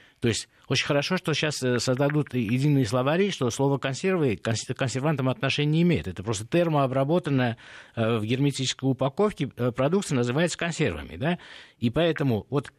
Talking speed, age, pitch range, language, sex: 135 wpm, 50-69, 120-150 Hz, Russian, male